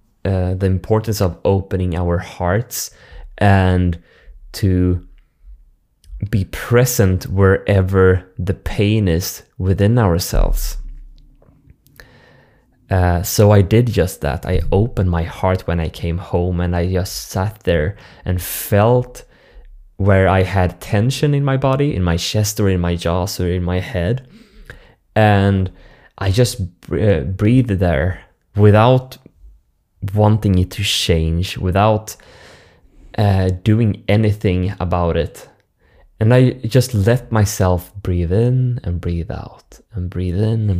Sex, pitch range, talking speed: male, 90-110 Hz, 125 wpm